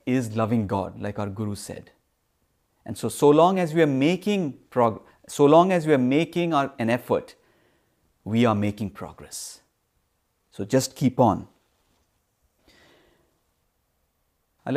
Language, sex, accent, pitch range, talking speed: English, male, Indian, 105-135 Hz, 140 wpm